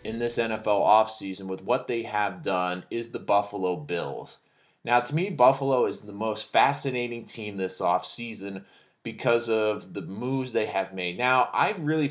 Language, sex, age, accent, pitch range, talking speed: English, male, 20-39, American, 105-130 Hz, 170 wpm